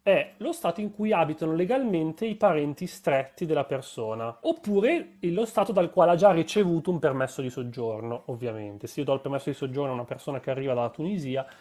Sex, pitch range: male, 130-170 Hz